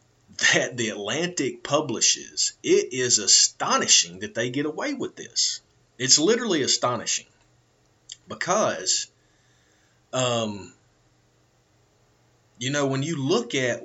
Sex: male